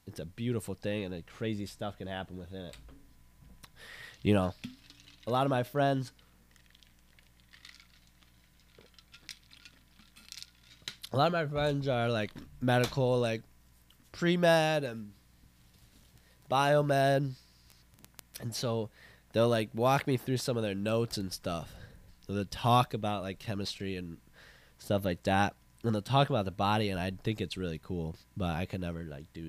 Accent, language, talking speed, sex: American, English, 145 wpm, male